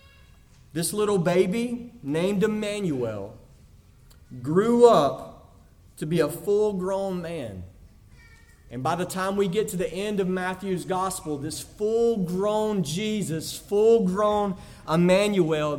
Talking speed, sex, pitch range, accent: 110 wpm, male, 145-220 Hz, American